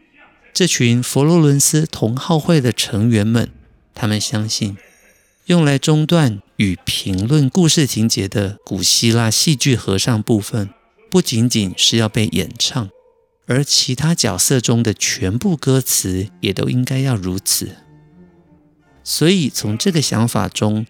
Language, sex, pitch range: Chinese, male, 105-150 Hz